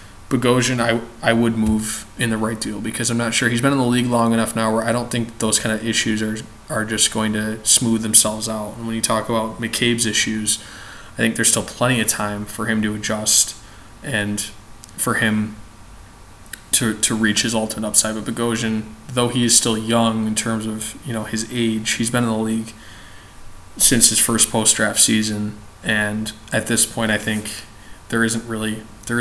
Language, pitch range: English, 110-115 Hz